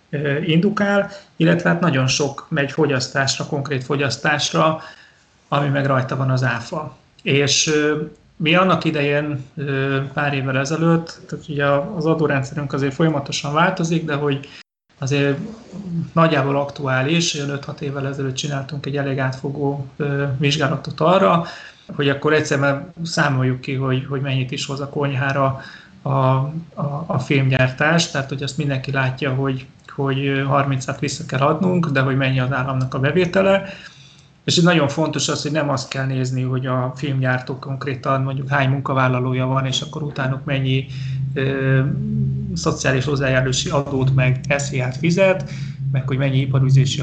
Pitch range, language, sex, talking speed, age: 135-155 Hz, Hungarian, male, 140 wpm, 30-49